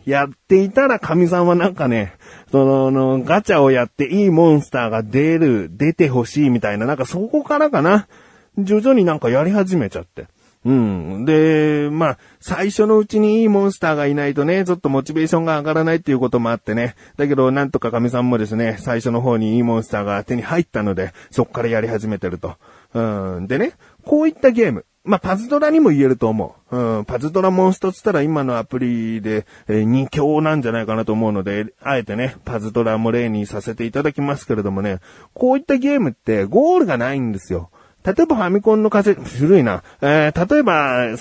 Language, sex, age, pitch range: Japanese, male, 40-59, 110-175 Hz